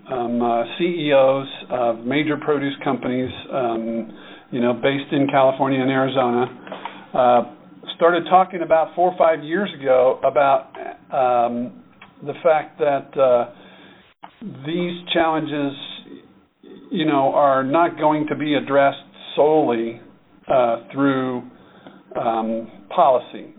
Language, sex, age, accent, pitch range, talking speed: English, male, 50-69, American, 125-155 Hz, 115 wpm